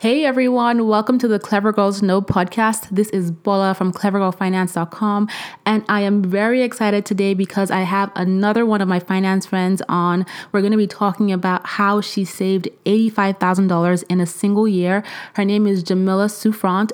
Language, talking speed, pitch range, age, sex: English, 170 wpm, 185-215 Hz, 20-39, female